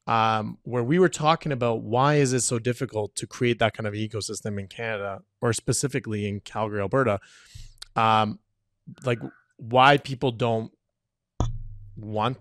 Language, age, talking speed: English, 20-39, 145 wpm